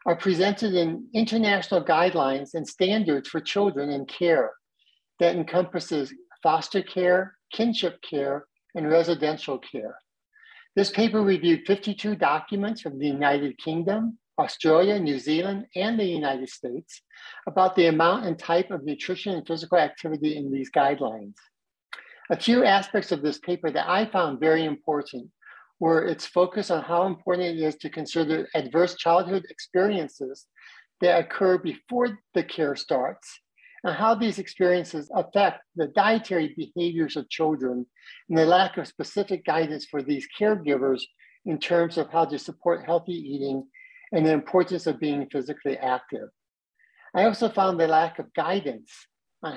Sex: male